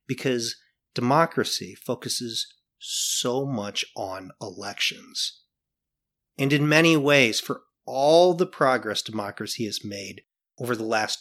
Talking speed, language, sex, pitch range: 110 wpm, English, male, 110-145 Hz